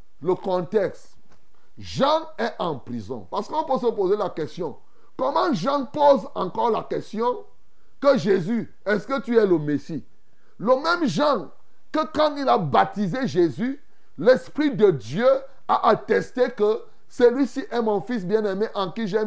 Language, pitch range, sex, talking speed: French, 200-285 Hz, male, 155 wpm